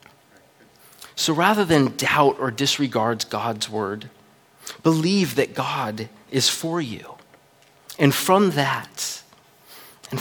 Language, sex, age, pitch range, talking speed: English, male, 30-49, 115-145 Hz, 105 wpm